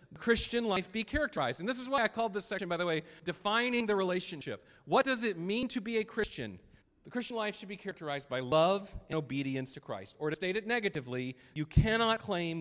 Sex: male